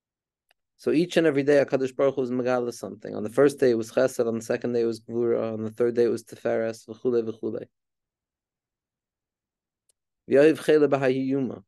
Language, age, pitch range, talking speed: English, 30-49, 115-145 Hz, 180 wpm